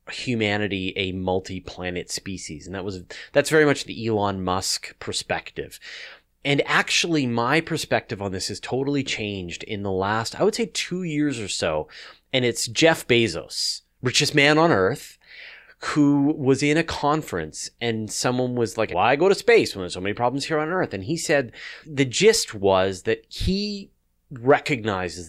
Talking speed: 175 wpm